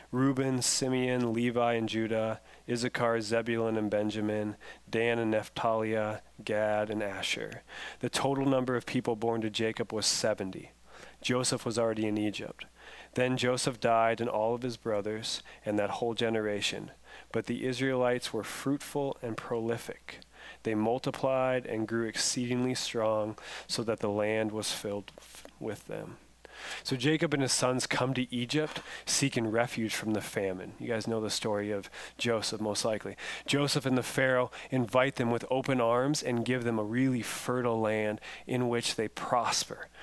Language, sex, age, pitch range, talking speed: English, male, 30-49, 110-125 Hz, 155 wpm